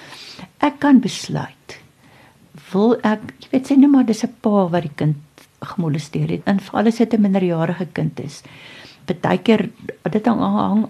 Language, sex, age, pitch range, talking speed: English, female, 60-79, 160-215 Hz, 165 wpm